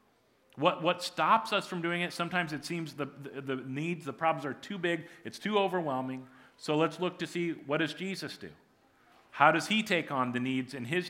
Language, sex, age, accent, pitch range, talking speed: English, male, 40-59, American, 140-180 Hz, 215 wpm